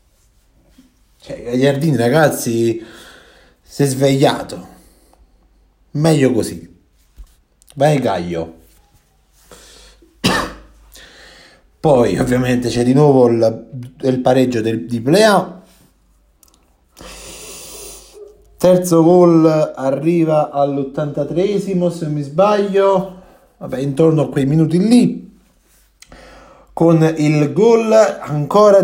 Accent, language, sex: native, Italian, male